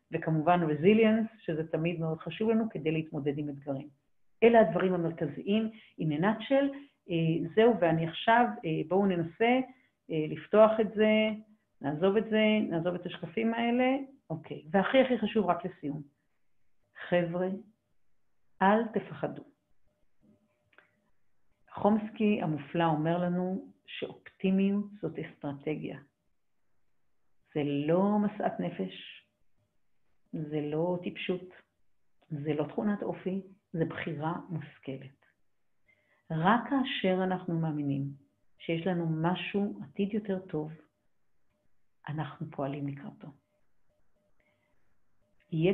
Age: 50-69